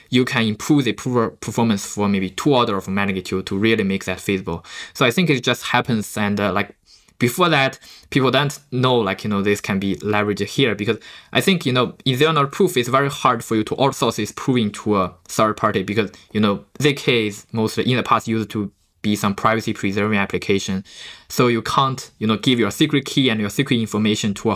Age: 20-39